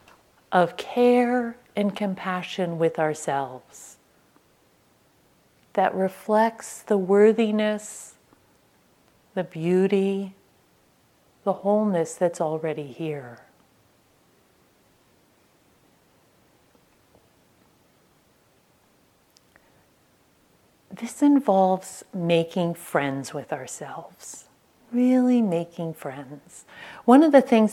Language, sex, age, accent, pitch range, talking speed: English, female, 40-59, American, 165-215 Hz, 65 wpm